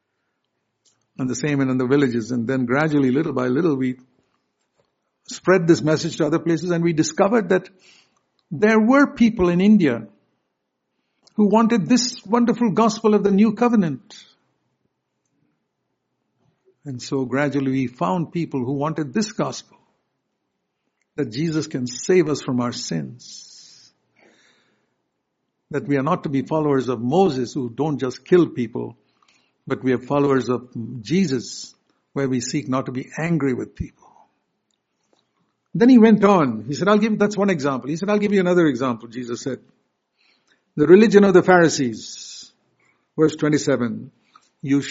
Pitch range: 130-180 Hz